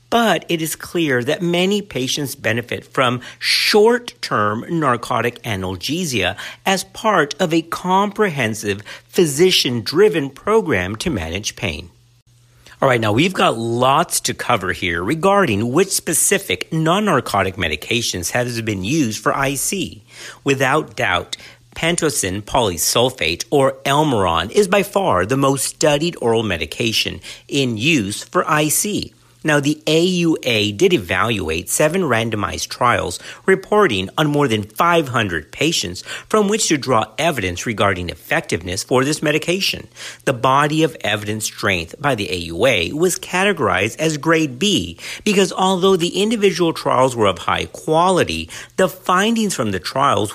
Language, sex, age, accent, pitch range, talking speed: English, male, 50-69, American, 110-170 Hz, 130 wpm